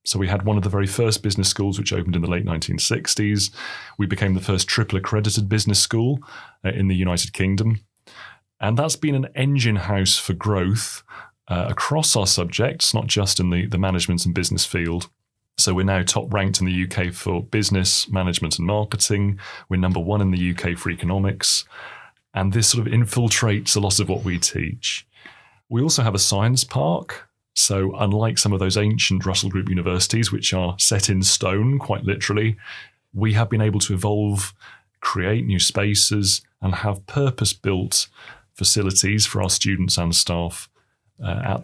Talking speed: 180 wpm